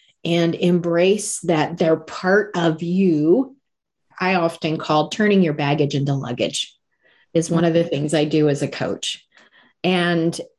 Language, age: English, 40-59